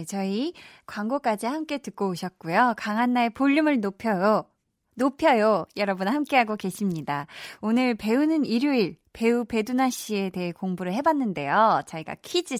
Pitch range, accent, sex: 190-275 Hz, native, female